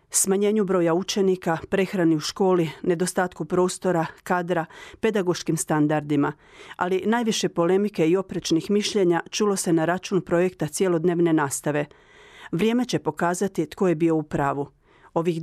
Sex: female